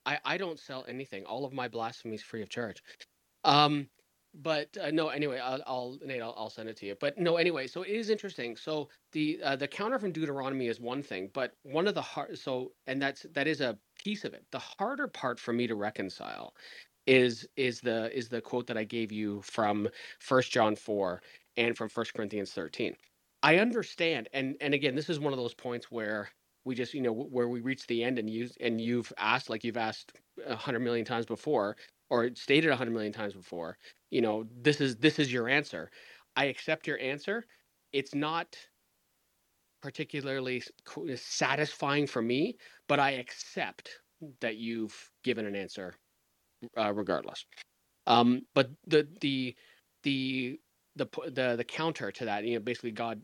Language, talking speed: English, 190 wpm